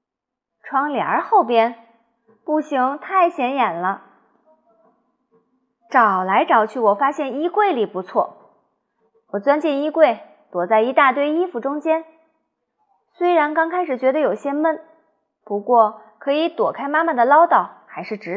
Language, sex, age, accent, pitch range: Chinese, female, 20-39, native, 220-310 Hz